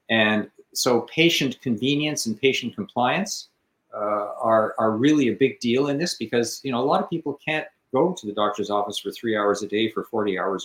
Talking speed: 210 wpm